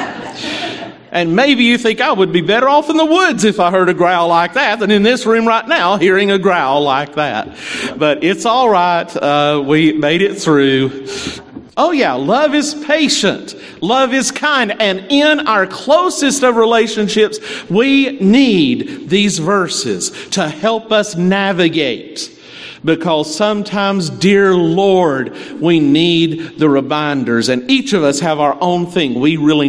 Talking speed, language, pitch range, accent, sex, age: 160 wpm, English, 170-260 Hz, American, male, 50-69